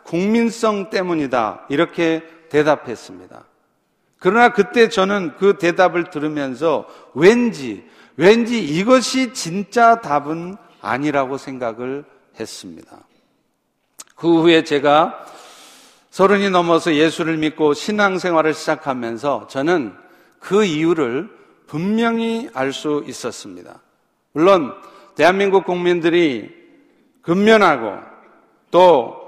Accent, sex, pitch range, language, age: native, male, 160-215 Hz, Korean, 50-69